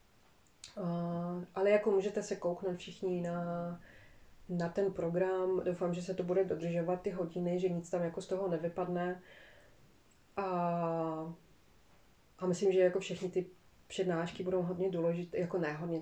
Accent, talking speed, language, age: native, 145 wpm, Czech, 20-39